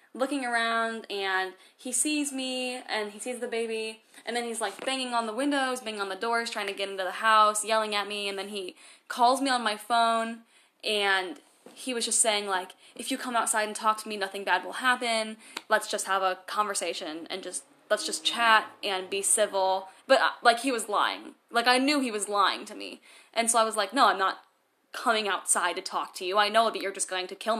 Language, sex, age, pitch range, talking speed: English, female, 10-29, 215-275 Hz, 230 wpm